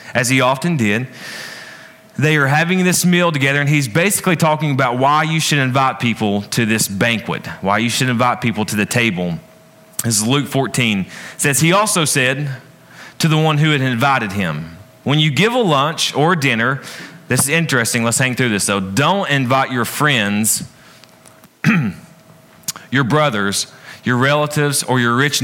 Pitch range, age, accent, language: 120-160 Hz, 30-49, American, English